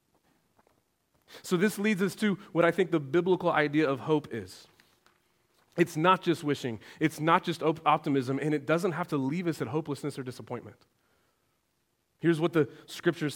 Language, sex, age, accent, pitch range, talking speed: English, male, 30-49, American, 135-170 Hz, 165 wpm